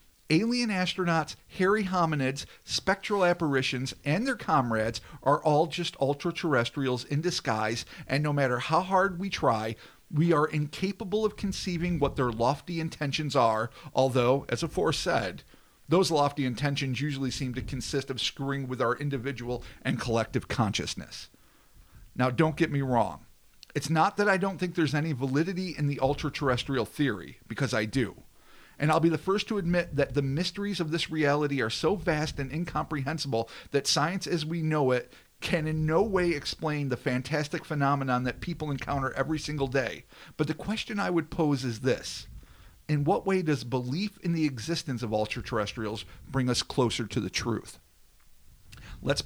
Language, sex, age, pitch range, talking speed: English, male, 50-69, 130-170 Hz, 165 wpm